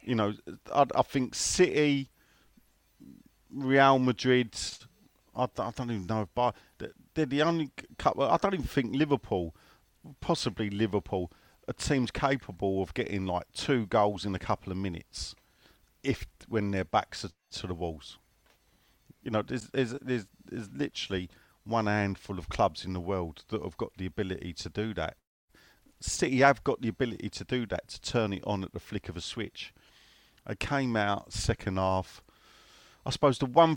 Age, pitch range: 40-59, 95-125 Hz